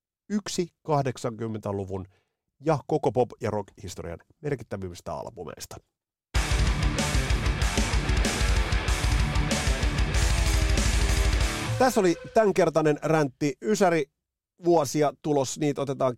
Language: Finnish